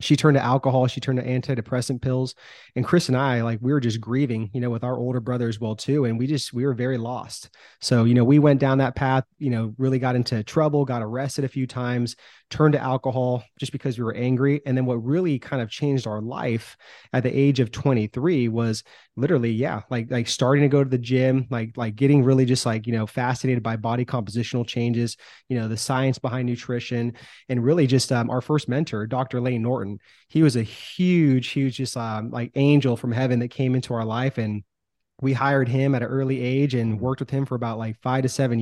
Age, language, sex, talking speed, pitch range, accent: 30-49, English, male, 230 wpm, 120-135 Hz, American